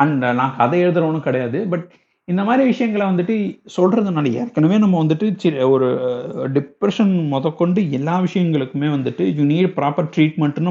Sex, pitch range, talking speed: male, 140-195 Hz, 140 wpm